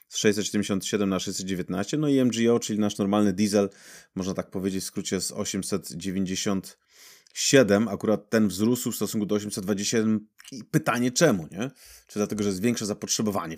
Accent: native